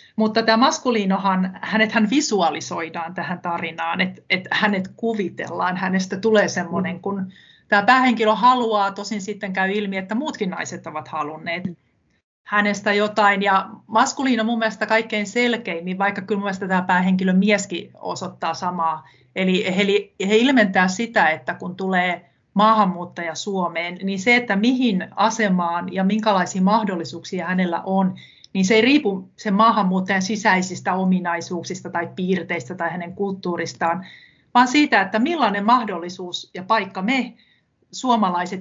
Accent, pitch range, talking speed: native, 180-220 Hz, 130 wpm